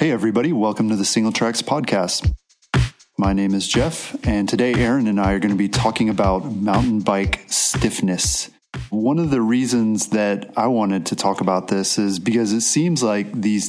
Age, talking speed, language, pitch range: 30-49, 190 wpm, English, 100-115 Hz